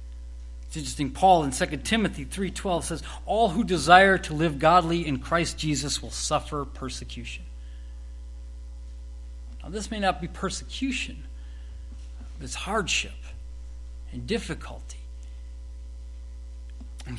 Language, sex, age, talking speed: English, male, 40-59, 110 wpm